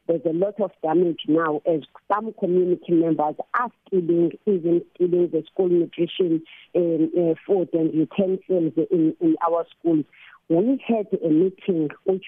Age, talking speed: 50-69, 145 wpm